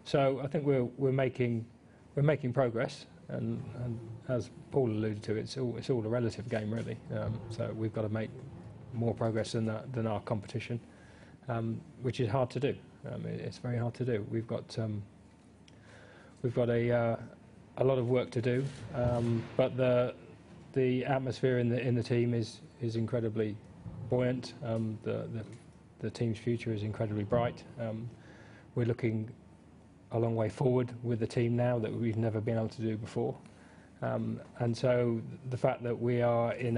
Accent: British